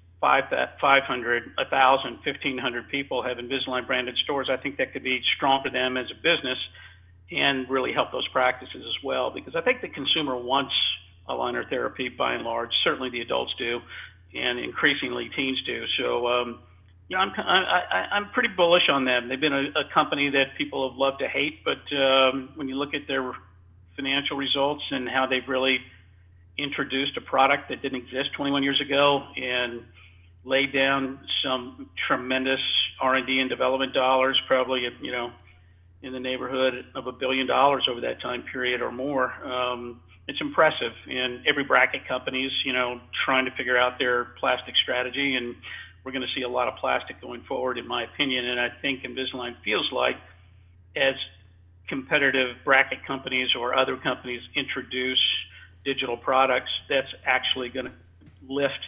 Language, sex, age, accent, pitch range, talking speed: English, male, 50-69, American, 120-135 Hz, 170 wpm